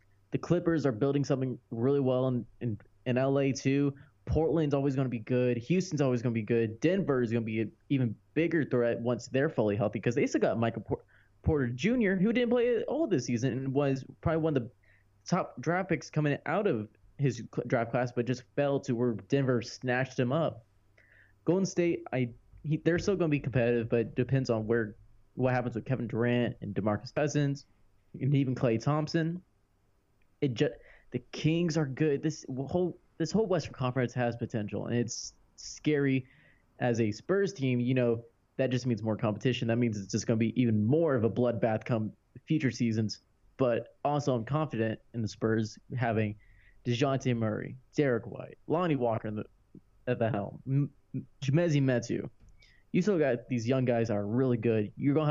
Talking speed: 195 wpm